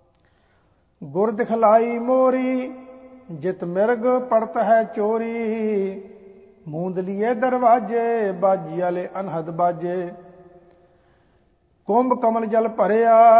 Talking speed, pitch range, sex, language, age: 75 wpm, 175-230 Hz, male, English, 50-69